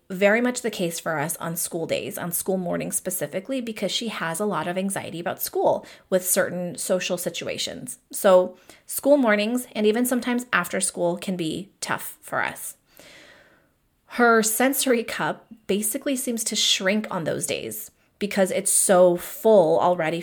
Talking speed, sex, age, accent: 160 wpm, female, 30-49, American